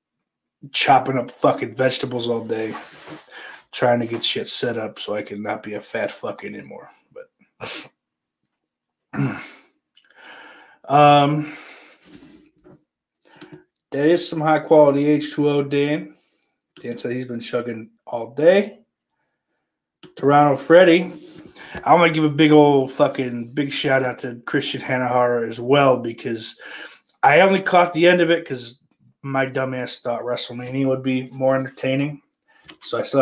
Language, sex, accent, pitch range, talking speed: English, male, American, 120-150 Hz, 135 wpm